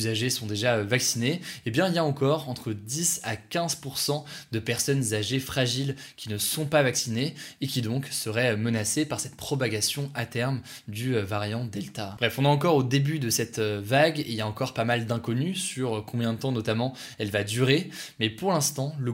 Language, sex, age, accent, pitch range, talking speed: French, male, 20-39, French, 115-140 Hz, 205 wpm